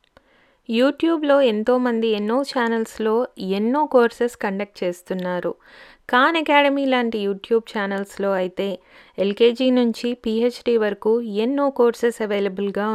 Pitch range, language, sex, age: 195-245 Hz, Telugu, female, 20-39